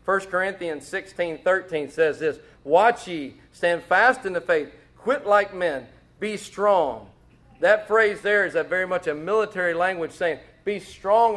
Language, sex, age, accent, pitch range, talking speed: English, male, 40-59, American, 125-175 Hz, 160 wpm